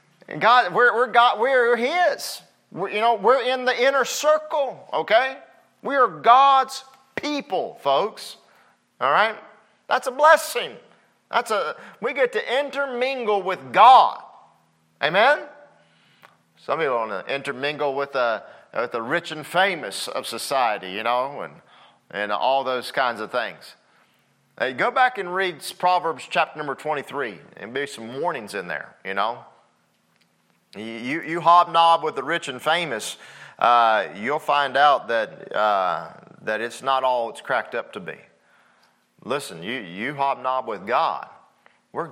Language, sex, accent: English, male, American